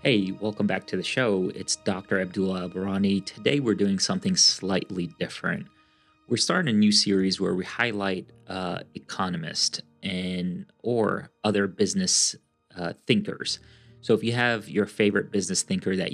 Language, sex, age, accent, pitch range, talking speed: English, male, 30-49, American, 95-125 Hz, 150 wpm